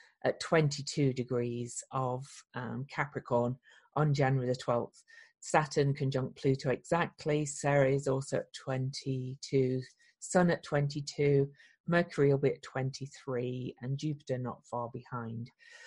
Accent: British